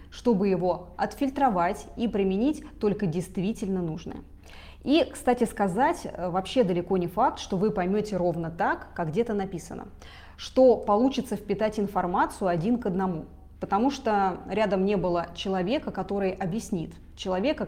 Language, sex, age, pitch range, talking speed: Russian, female, 20-39, 185-240 Hz, 130 wpm